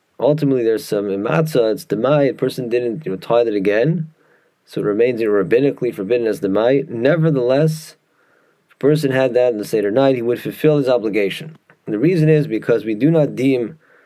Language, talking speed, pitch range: English, 195 wpm, 115-155 Hz